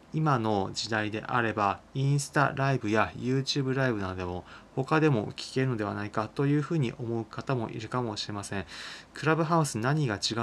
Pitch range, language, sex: 105-140 Hz, Japanese, male